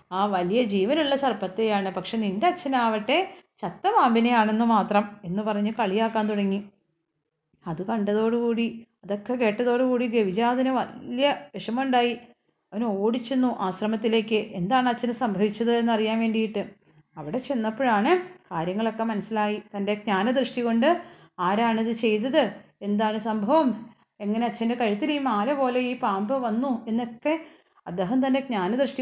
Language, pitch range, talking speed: Malayalam, 200-255 Hz, 110 wpm